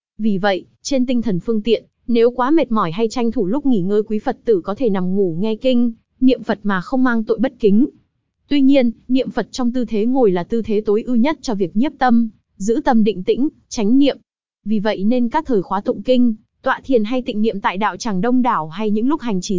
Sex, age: female, 20-39